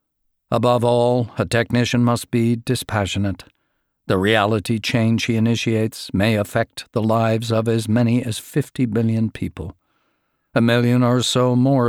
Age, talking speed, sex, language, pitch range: 50-69, 140 wpm, male, English, 105-130 Hz